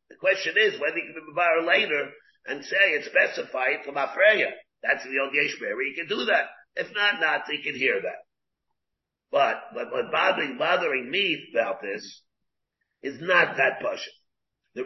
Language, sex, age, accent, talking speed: English, male, 50-69, American, 180 wpm